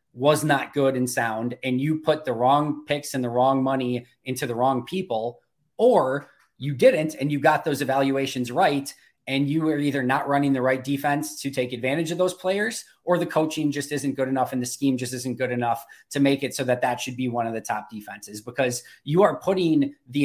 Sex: male